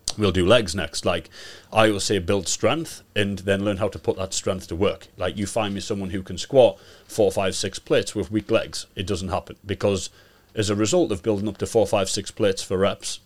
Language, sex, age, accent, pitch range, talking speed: English, male, 30-49, British, 90-105 Hz, 235 wpm